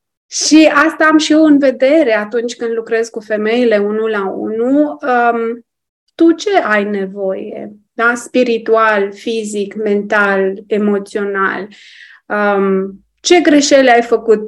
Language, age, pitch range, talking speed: Romanian, 30-49, 200-250 Hz, 115 wpm